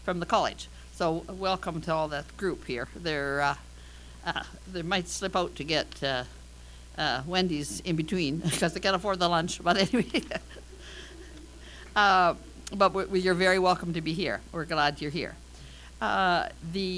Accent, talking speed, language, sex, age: American, 175 wpm, English, female, 60-79